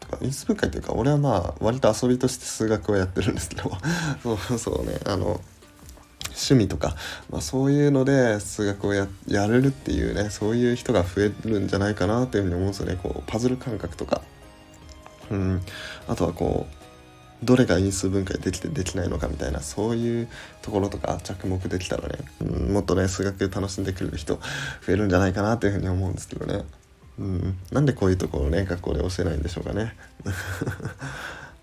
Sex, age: male, 20-39